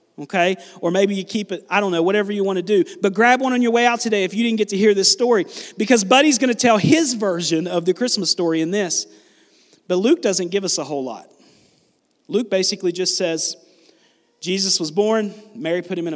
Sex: male